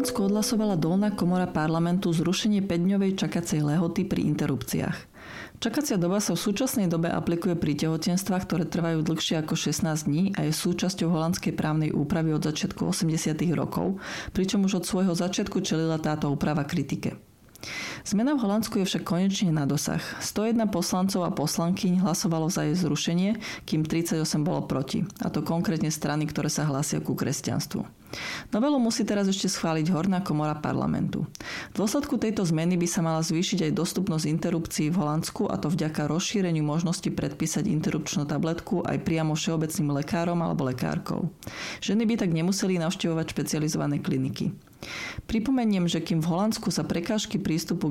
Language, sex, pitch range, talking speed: Slovak, female, 160-195 Hz, 155 wpm